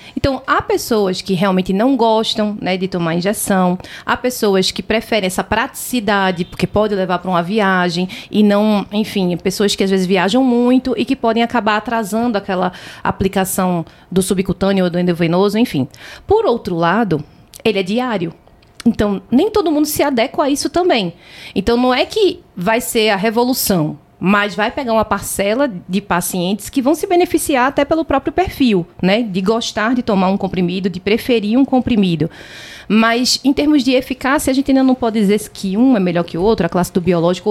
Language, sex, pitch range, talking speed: Portuguese, female, 190-255 Hz, 185 wpm